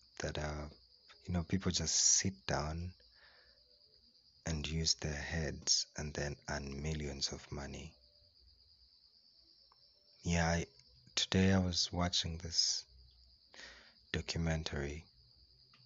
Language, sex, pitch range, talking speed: English, male, 75-90 Hz, 100 wpm